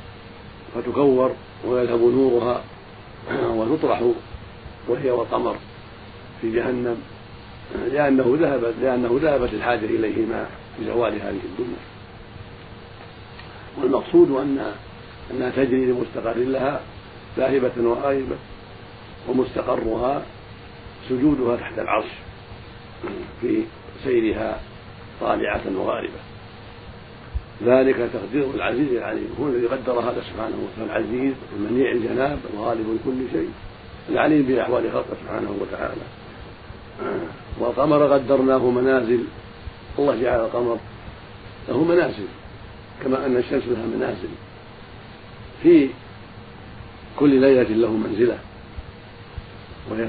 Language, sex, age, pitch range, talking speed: Arabic, male, 50-69, 115-130 Hz, 85 wpm